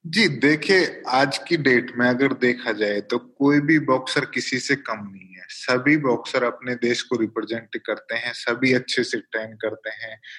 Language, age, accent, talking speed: Hindi, 20-39, native, 185 wpm